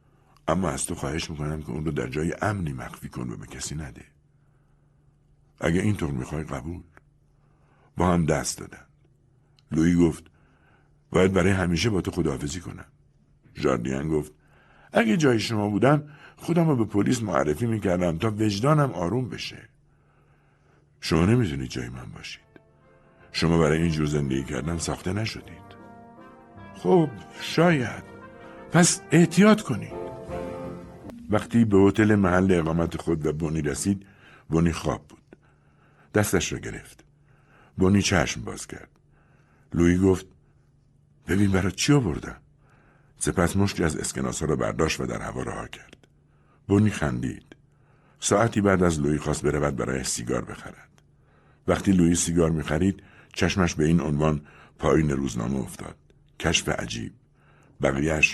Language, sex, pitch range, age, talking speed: Persian, male, 75-105 Hz, 60-79, 135 wpm